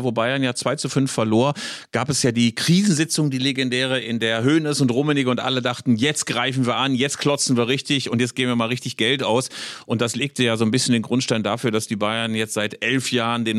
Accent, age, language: German, 40-59, German